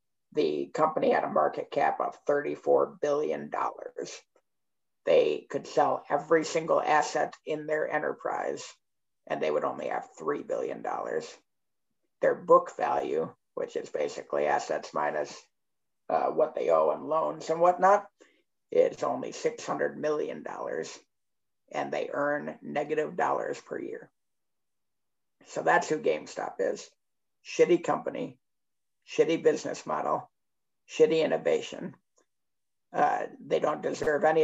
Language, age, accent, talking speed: English, 50-69, American, 120 wpm